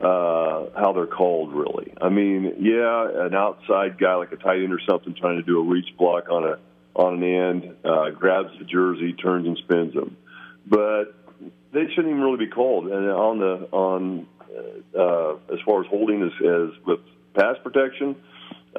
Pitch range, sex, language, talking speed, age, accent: 85-105 Hz, male, English, 180 wpm, 40-59, American